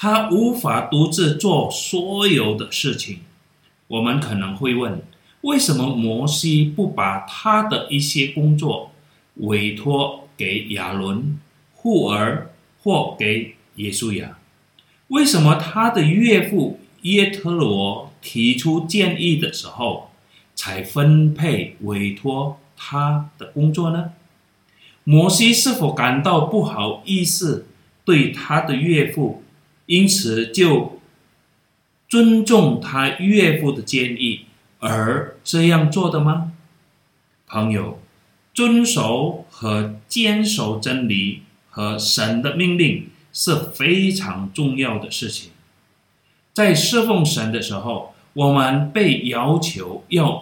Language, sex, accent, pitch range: Chinese, male, native, 115-175 Hz